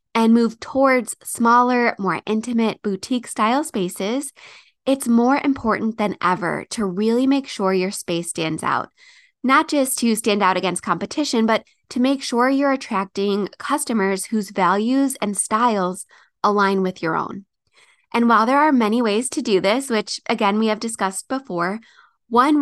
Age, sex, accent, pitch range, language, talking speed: 20-39, female, American, 195-250 Hz, English, 155 wpm